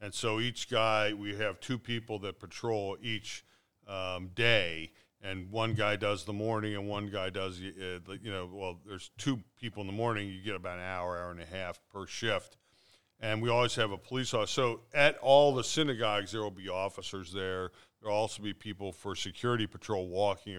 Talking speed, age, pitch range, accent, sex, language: 205 wpm, 50-69, 100-125 Hz, American, male, English